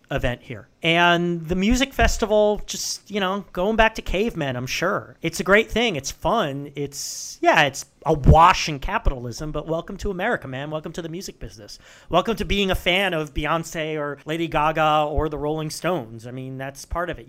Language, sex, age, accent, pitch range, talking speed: English, male, 40-59, American, 135-175 Hz, 200 wpm